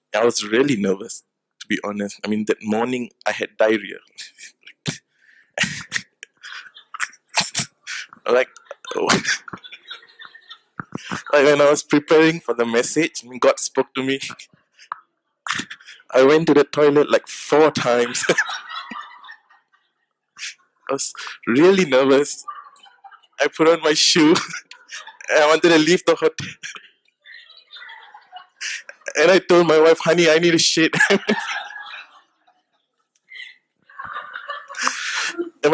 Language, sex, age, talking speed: English, male, 20-39, 100 wpm